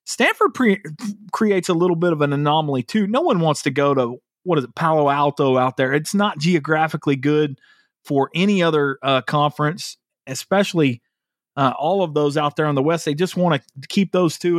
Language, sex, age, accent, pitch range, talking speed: English, male, 30-49, American, 150-195 Hz, 200 wpm